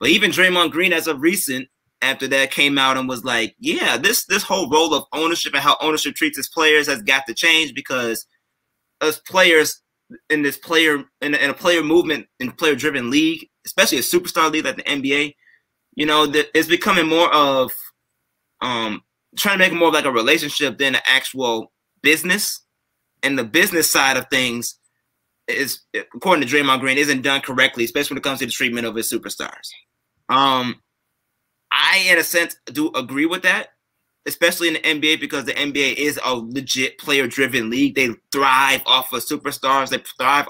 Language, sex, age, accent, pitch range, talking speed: English, male, 20-39, American, 135-165 Hz, 190 wpm